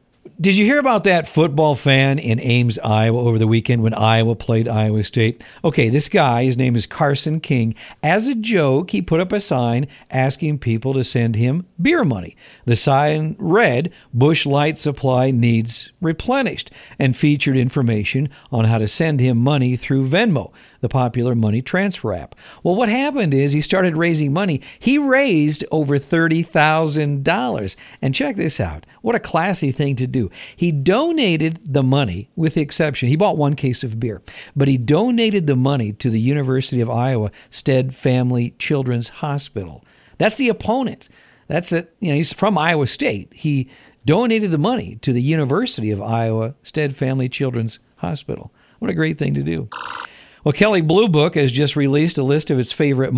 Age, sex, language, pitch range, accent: 50-69, male, Japanese, 120-160 Hz, American